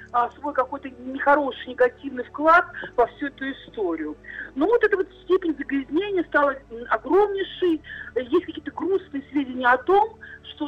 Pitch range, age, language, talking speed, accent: 250-330 Hz, 50-69, Russian, 130 wpm, native